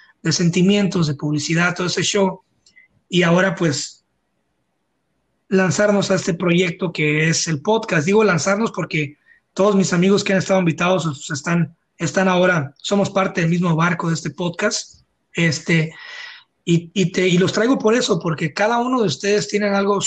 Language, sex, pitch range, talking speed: Spanish, male, 165-205 Hz, 165 wpm